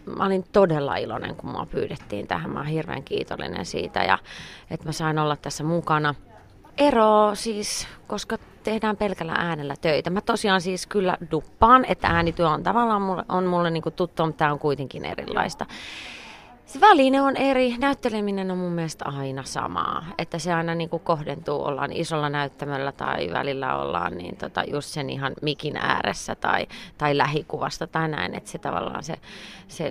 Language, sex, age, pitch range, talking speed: Finnish, female, 30-49, 145-185 Hz, 170 wpm